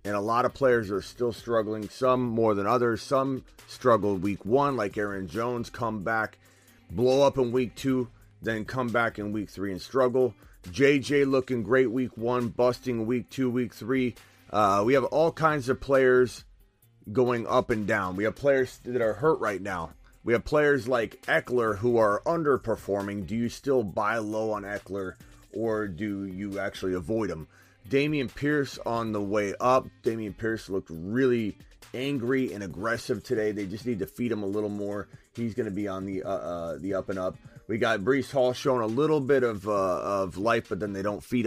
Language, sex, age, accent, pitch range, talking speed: English, male, 30-49, American, 100-125 Hz, 195 wpm